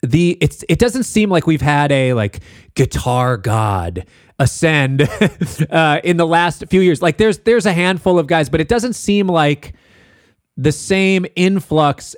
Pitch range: 120-180 Hz